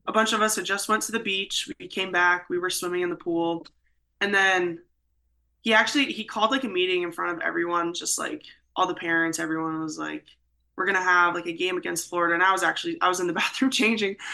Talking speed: 245 wpm